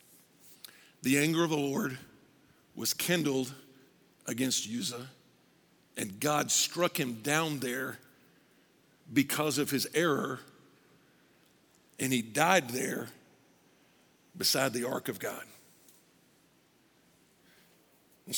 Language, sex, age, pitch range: English, male, 50-69, 170-270 Hz